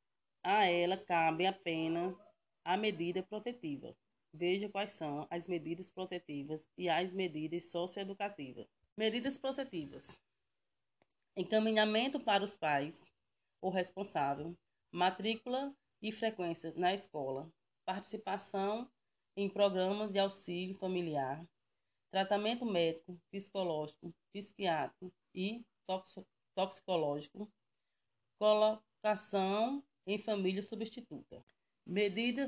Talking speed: 85 wpm